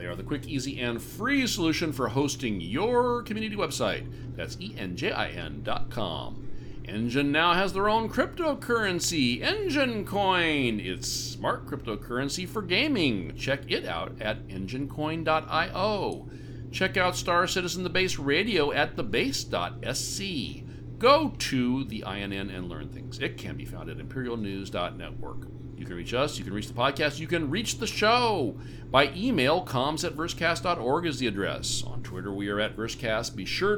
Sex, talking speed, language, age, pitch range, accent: male, 155 wpm, English, 50-69, 115-155 Hz, American